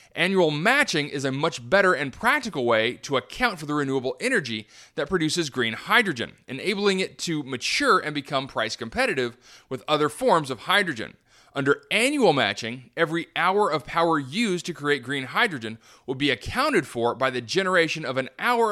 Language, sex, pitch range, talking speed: English, male, 135-185 Hz, 175 wpm